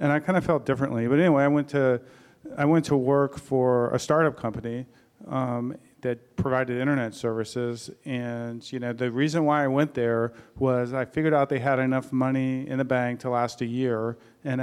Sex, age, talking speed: male, 40-59, 200 wpm